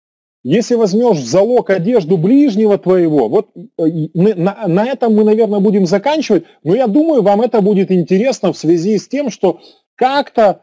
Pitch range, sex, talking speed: 175-255 Hz, male, 160 wpm